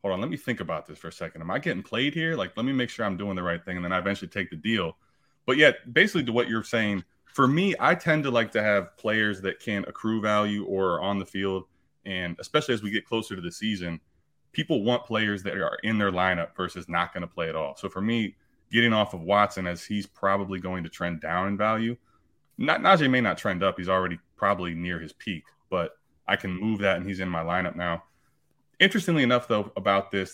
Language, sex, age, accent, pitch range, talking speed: English, male, 20-39, American, 90-110 Hz, 245 wpm